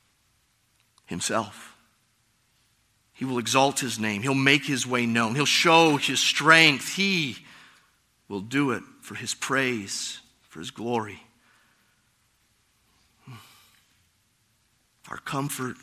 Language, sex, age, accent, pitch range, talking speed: English, male, 30-49, American, 115-145 Hz, 100 wpm